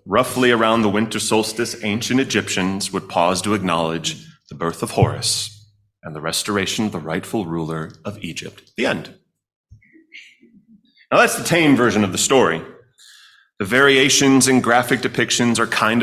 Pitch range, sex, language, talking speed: 100-125 Hz, male, English, 155 wpm